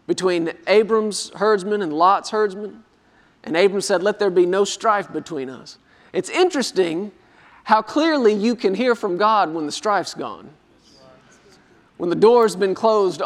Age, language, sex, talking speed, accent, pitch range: 40-59, English, male, 155 wpm, American, 185-255 Hz